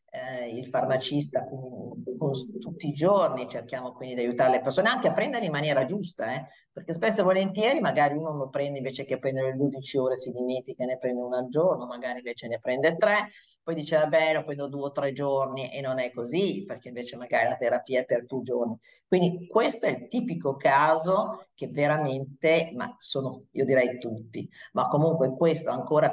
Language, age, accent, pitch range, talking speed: Italian, 50-69, native, 125-155 Hz, 195 wpm